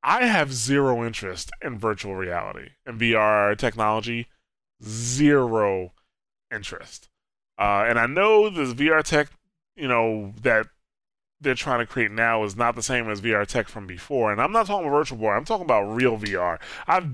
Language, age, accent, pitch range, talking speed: English, 20-39, American, 105-130 Hz, 170 wpm